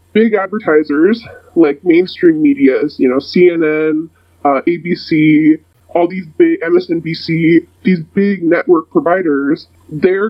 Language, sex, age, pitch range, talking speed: English, female, 20-39, 160-265 Hz, 110 wpm